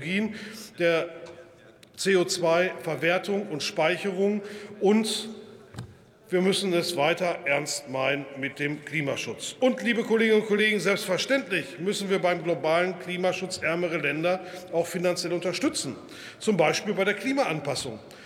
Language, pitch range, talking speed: German, 175-215 Hz, 115 wpm